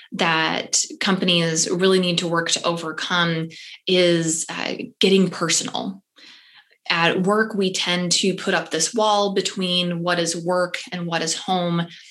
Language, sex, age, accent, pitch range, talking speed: English, female, 20-39, American, 170-195 Hz, 145 wpm